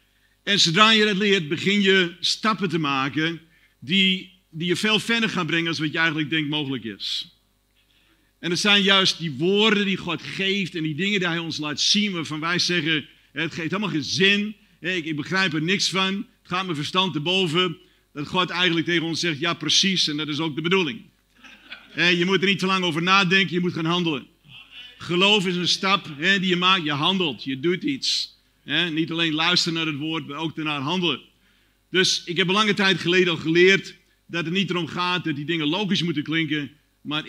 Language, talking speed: Dutch, 210 wpm